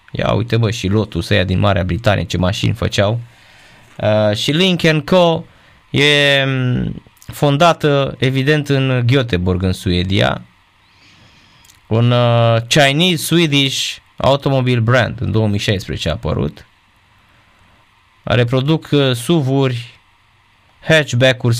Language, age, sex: Romanian, 20-39, male